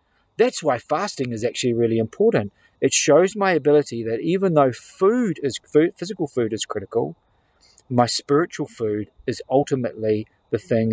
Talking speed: 150 wpm